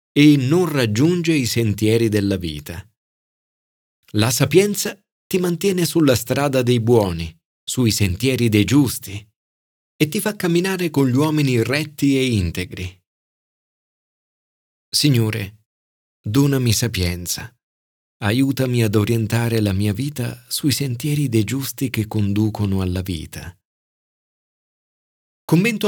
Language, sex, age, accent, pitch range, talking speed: Italian, male, 40-59, native, 95-145 Hz, 110 wpm